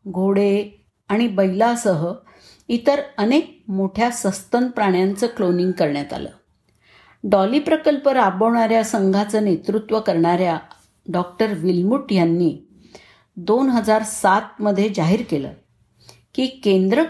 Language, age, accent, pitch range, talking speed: Marathi, 50-69, native, 170-220 Hz, 90 wpm